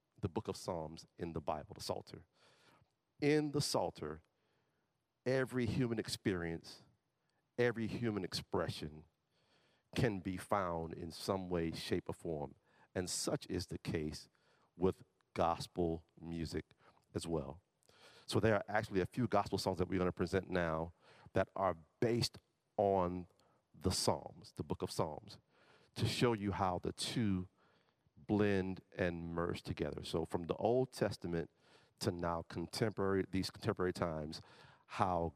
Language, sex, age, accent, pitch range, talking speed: English, male, 50-69, American, 85-110 Hz, 140 wpm